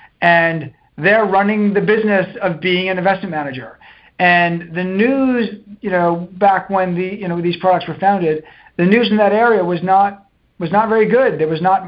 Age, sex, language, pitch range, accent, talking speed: 40-59, male, English, 165-200 Hz, American, 190 wpm